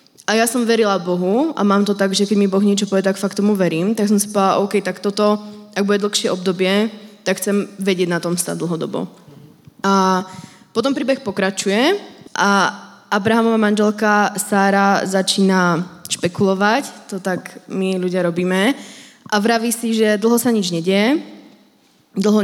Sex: female